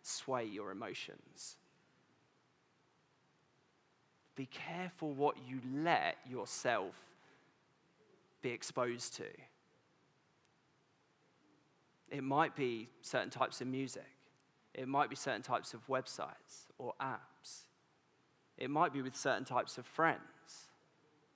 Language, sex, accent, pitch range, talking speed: English, male, British, 130-155 Hz, 100 wpm